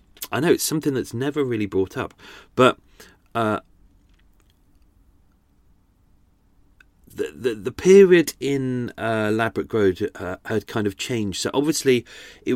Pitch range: 95-125 Hz